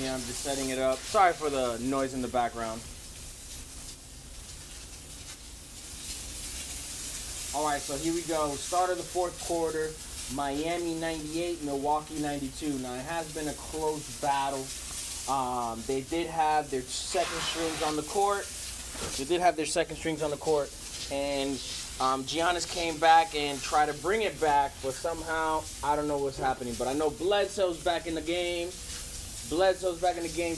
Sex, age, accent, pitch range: male, 20-39, American, 115-160 Hz